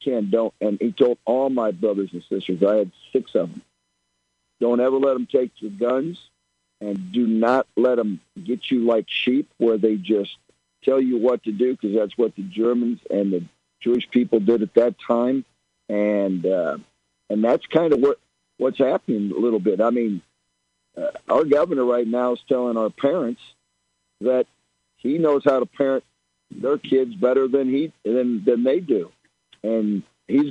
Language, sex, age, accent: English, male, 50-69, American